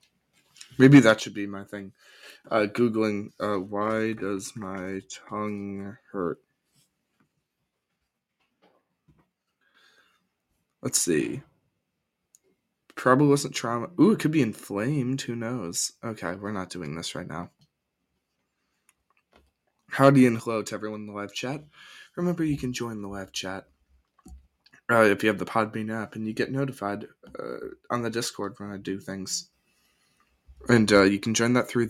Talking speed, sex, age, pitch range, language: 140 wpm, male, 20-39, 100-145 Hz, English